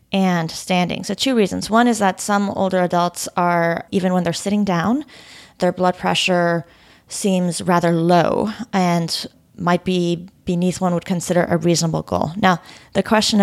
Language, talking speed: English, 160 wpm